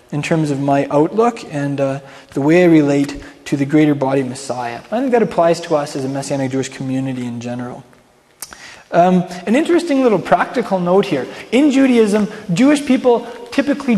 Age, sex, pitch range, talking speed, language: 20-39, male, 150-205 Hz, 175 wpm, English